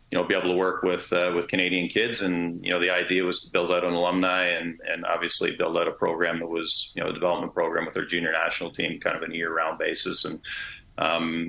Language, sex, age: English, male, 40-59